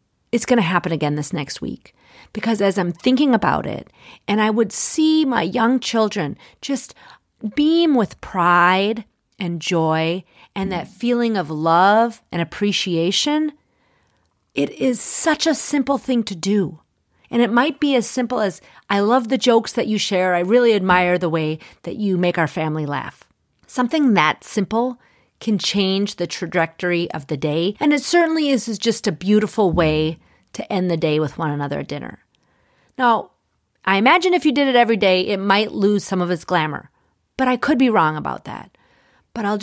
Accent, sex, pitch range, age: American, female, 180-255 Hz, 40-59